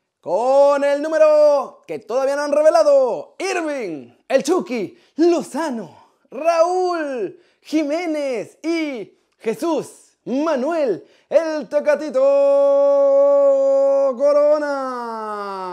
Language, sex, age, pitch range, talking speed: Spanish, male, 30-49, 205-290 Hz, 75 wpm